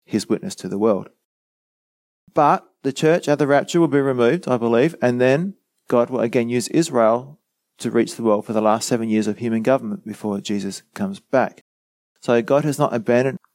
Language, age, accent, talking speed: English, 30-49, Australian, 195 wpm